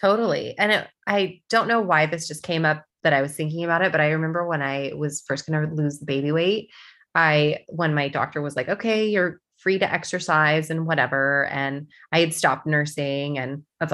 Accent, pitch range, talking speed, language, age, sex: American, 150-185 Hz, 210 wpm, English, 20-39, female